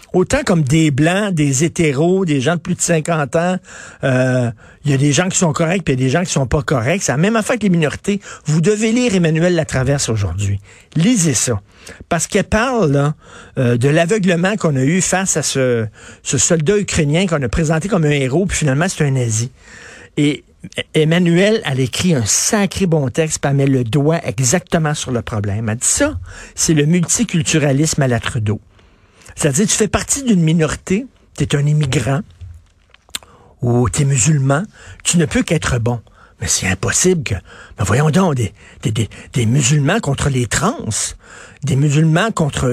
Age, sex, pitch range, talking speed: 50-69, male, 120-170 Hz, 185 wpm